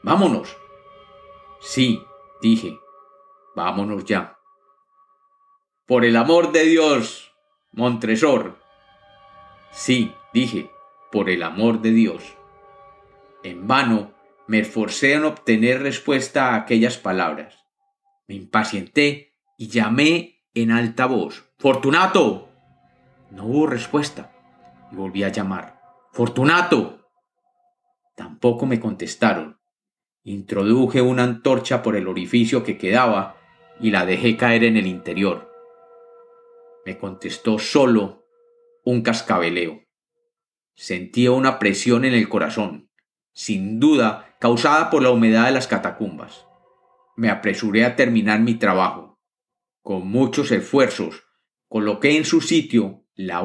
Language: Spanish